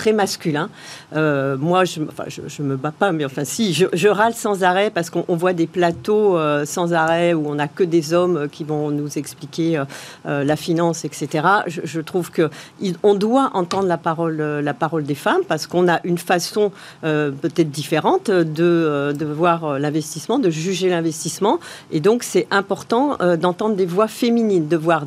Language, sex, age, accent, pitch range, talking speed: French, female, 50-69, French, 160-200 Hz, 200 wpm